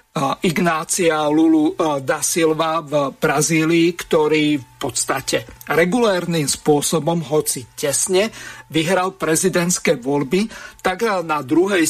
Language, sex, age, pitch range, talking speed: Slovak, male, 50-69, 155-185 Hz, 95 wpm